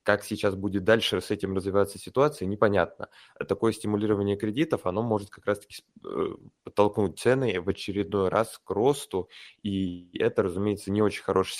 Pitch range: 95-110 Hz